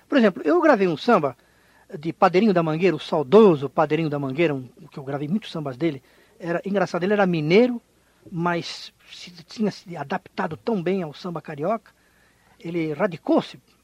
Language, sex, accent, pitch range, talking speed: Portuguese, male, Brazilian, 150-210 Hz, 165 wpm